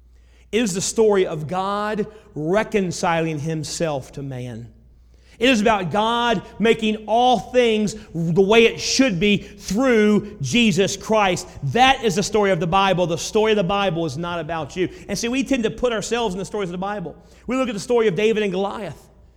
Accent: American